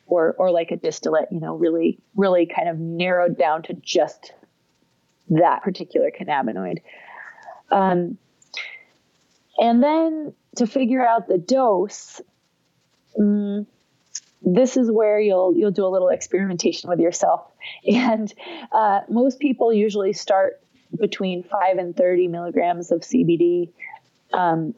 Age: 30-49